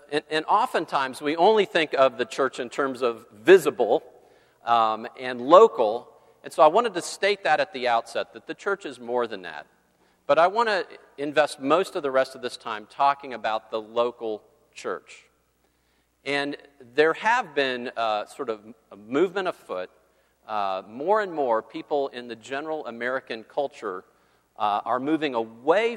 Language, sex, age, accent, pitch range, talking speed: English, male, 50-69, American, 110-145 Hz, 170 wpm